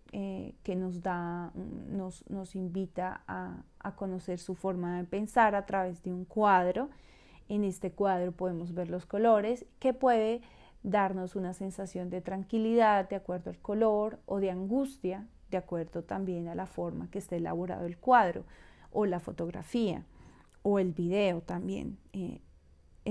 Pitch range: 185-225 Hz